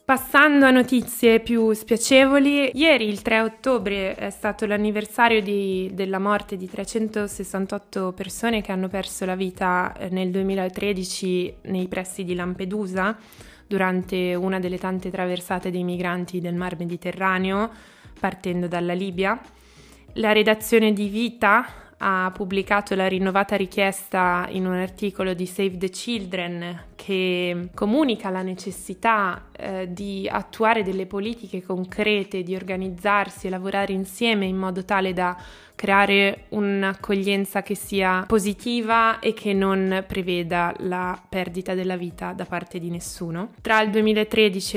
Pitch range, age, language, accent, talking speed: 185-210 Hz, 20-39, Italian, native, 125 wpm